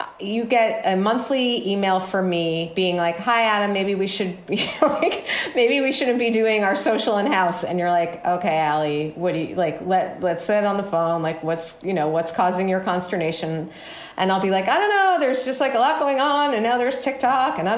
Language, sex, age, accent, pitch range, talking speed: English, female, 30-49, American, 160-215 Hz, 225 wpm